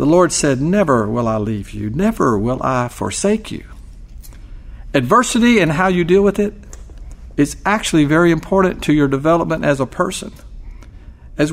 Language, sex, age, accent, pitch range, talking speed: English, male, 50-69, American, 110-175 Hz, 160 wpm